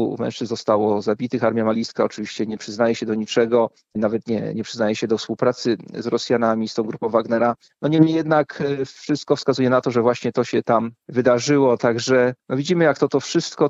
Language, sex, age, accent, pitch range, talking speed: Polish, male, 40-59, native, 120-145 Hz, 195 wpm